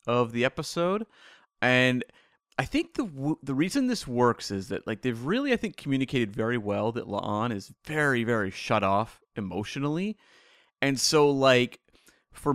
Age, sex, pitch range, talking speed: 30-49, male, 110-145 Hz, 165 wpm